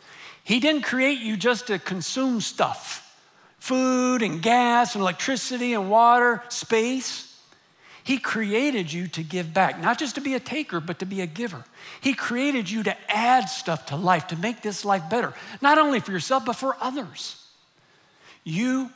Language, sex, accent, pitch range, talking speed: English, male, American, 175-240 Hz, 170 wpm